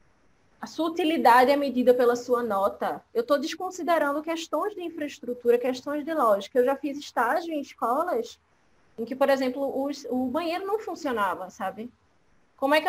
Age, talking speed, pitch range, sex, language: 20-39, 170 wpm, 245-315 Hz, female, Portuguese